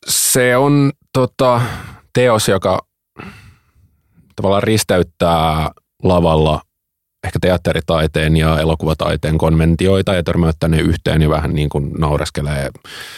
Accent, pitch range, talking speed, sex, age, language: native, 80-100 Hz, 95 wpm, male, 30-49, Finnish